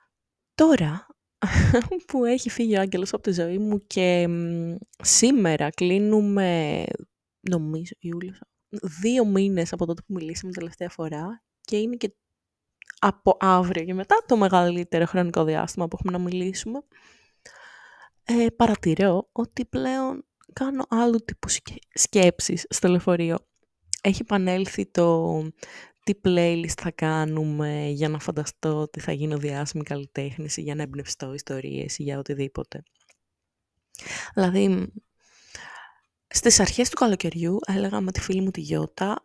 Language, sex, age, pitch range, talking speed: Greek, female, 20-39, 160-200 Hz, 125 wpm